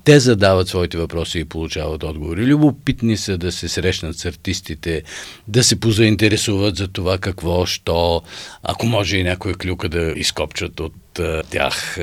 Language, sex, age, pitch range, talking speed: Bulgarian, male, 50-69, 85-115 Hz, 150 wpm